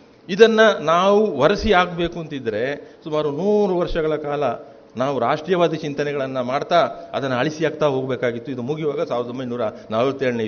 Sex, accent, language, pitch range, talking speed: male, native, Kannada, 140-185 Hz, 125 wpm